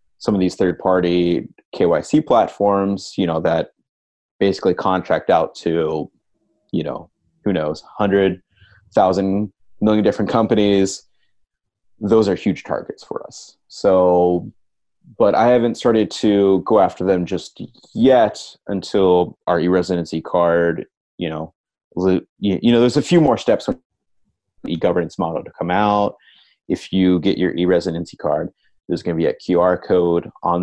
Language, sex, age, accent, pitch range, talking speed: English, male, 30-49, American, 85-100 Hz, 145 wpm